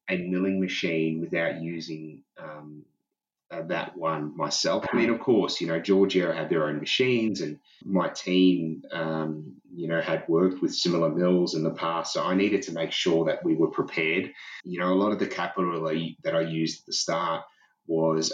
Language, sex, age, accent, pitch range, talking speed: English, male, 30-49, Australian, 80-95 Hz, 195 wpm